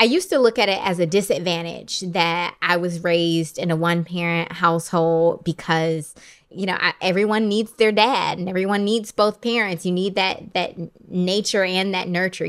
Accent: American